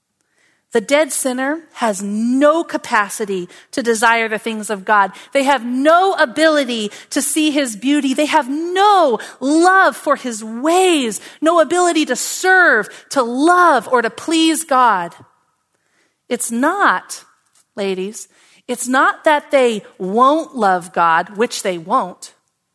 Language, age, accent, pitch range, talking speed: English, 40-59, American, 230-320 Hz, 130 wpm